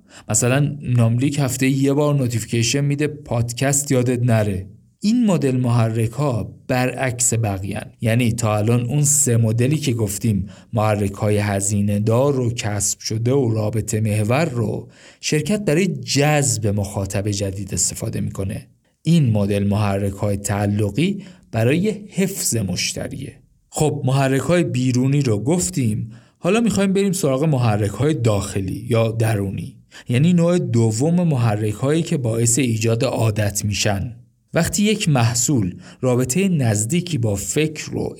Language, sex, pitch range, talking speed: Persian, male, 105-150 Hz, 130 wpm